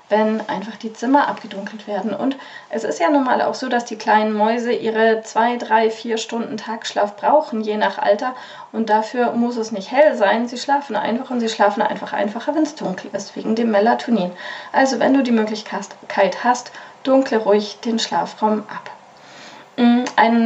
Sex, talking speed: female, 180 wpm